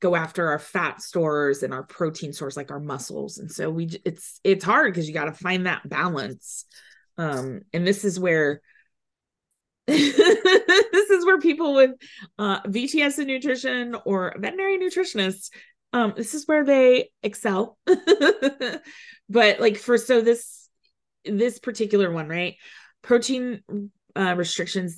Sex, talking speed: female, 145 wpm